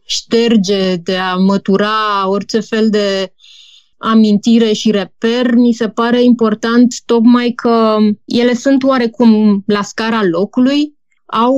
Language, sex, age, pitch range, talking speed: Romanian, female, 20-39, 205-235 Hz, 120 wpm